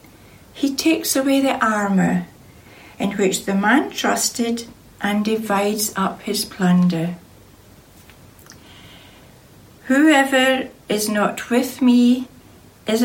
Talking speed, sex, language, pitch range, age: 95 wpm, female, English, 185-250 Hz, 60-79